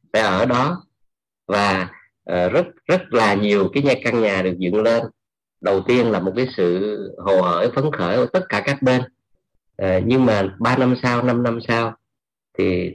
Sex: male